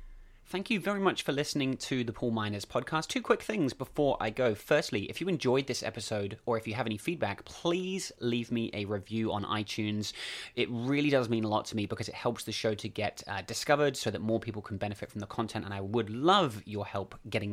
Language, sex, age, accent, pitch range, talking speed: English, male, 30-49, British, 105-130 Hz, 235 wpm